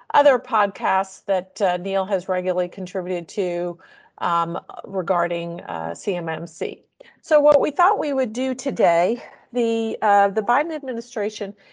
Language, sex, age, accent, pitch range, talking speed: English, female, 40-59, American, 175-215 Hz, 135 wpm